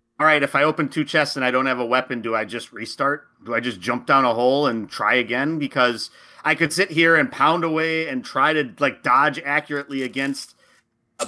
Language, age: English, 40-59